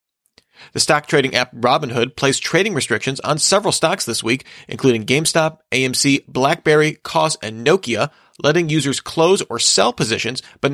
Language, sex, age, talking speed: English, male, 40-59, 150 wpm